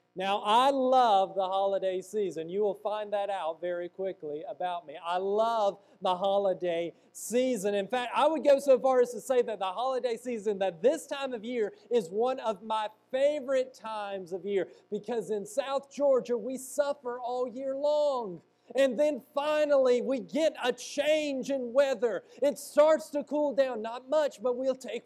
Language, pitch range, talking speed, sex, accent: English, 160-265 Hz, 180 wpm, male, American